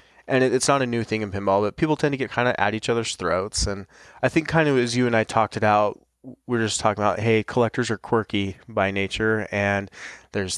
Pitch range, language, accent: 100-120 Hz, English, American